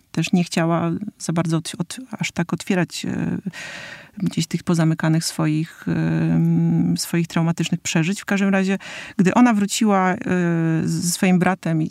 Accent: native